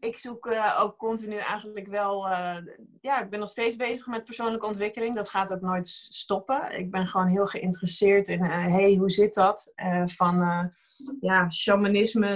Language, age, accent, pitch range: Dutch, 20-39, Dutch, 185-215 Hz